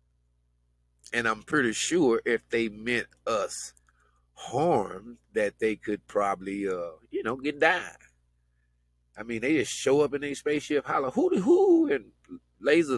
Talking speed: 145 wpm